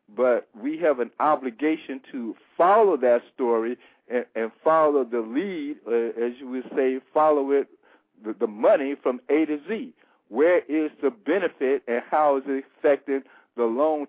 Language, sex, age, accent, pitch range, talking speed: English, male, 60-79, American, 125-155 Hz, 165 wpm